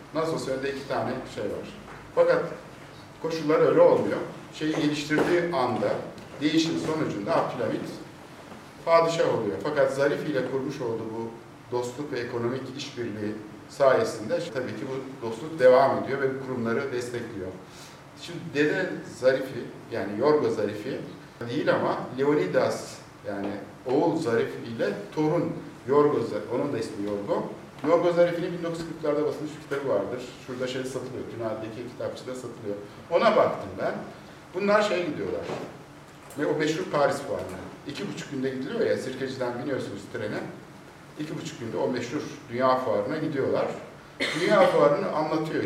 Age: 60-79